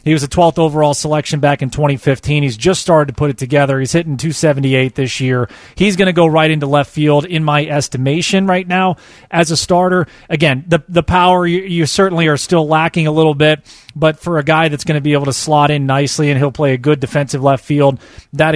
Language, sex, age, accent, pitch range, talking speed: English, male, 30-49, American, 140-160 Hz, 235 wpm